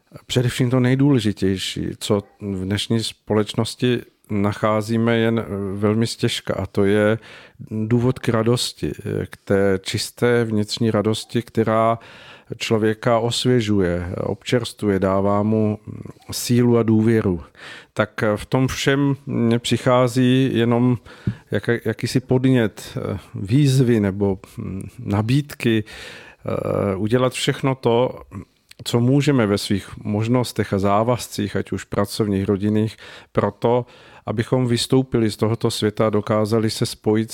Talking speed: 105 wpm